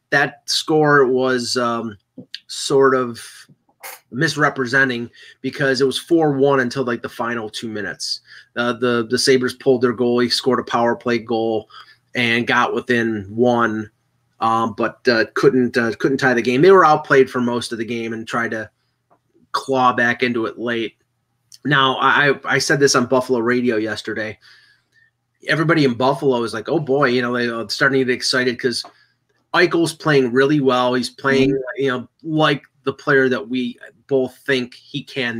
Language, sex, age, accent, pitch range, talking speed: English, male, 30-49, American, 120-135 Hz, 170 wpm